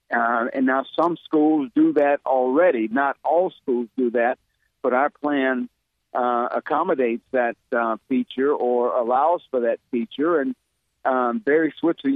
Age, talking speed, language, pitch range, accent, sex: 50-69, 150 wpm, English, 125-155 Hz, American, male